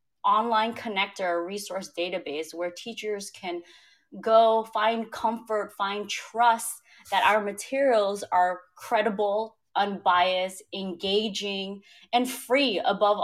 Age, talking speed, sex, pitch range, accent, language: 20-39, 100 wpm, female, 180-225 Hz, American, English